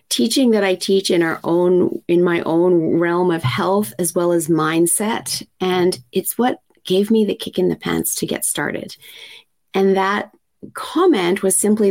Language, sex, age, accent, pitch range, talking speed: English, female, 30-49, American, 175-210 Hz, 175 wpm